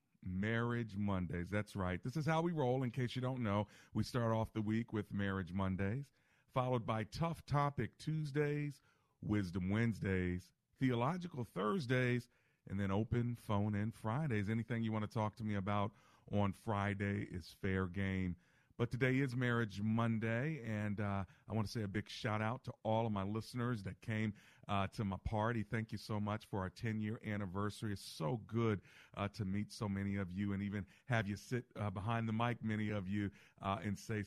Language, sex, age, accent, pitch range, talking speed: English, male, 40-59, American, 100-120 Hz, 190 wpm